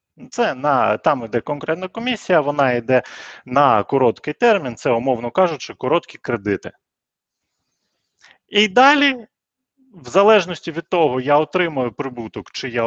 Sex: male